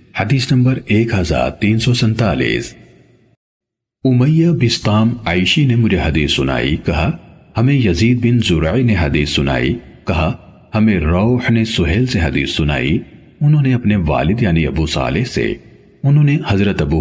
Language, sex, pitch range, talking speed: Urdu, male, 80-125 Hz, 140 wpm